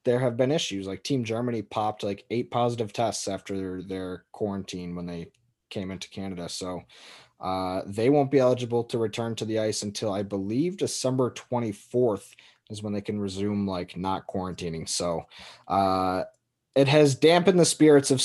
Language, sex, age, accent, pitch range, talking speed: English, male, 20-39, American, 105-135 Hz, 175 wpm